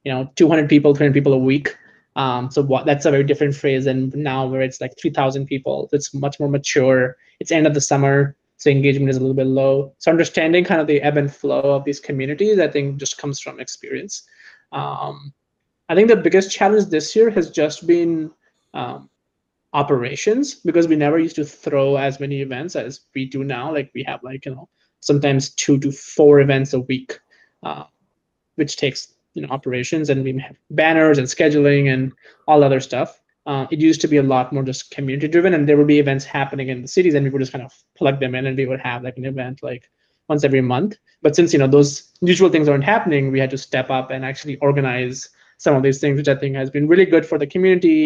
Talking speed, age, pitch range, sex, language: 230 wpm, 20-39, 135-150 Hz, male, English